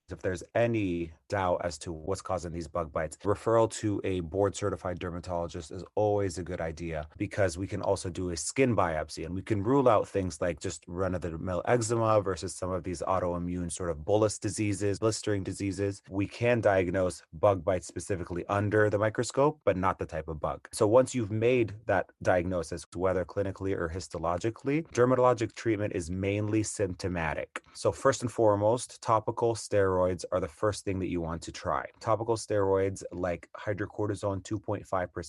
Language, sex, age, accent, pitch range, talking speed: English, male, 30-49, American, 90-110 Hz, 170 wpm